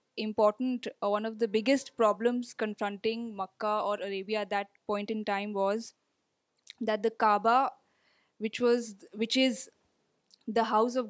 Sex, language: female, Urdu